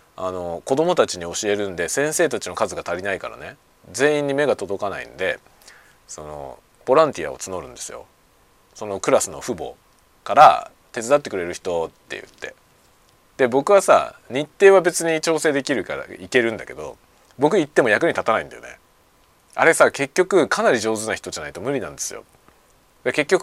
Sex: male